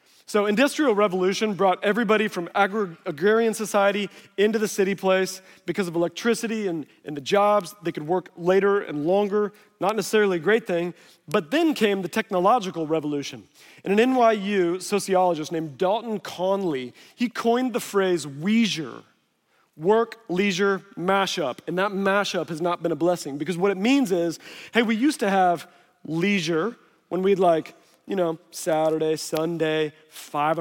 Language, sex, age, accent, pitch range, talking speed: English, male, 30-49, American, 170-215 Hz, 155 wpm